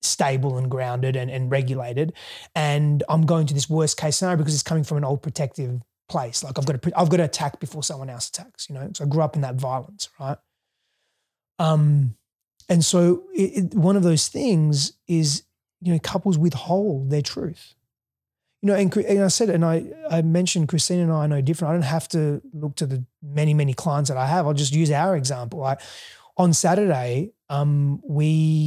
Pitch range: 135-165 Hz